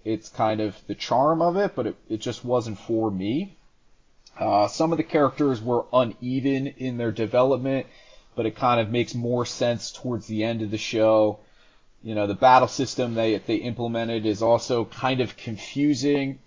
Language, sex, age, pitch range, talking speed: English, male, 30-49, 105-125 Hz, 185 wpm